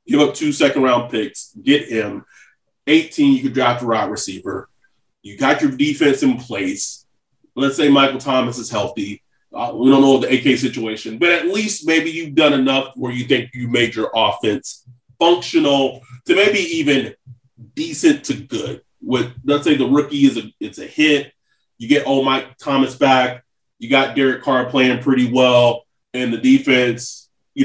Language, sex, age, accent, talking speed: English, male, 30-49, American, 180 wpm